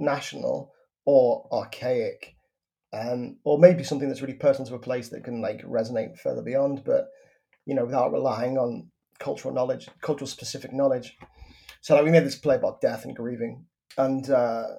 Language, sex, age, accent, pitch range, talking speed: English, male, 30-49, British, 130-155 Hz, 170 wpm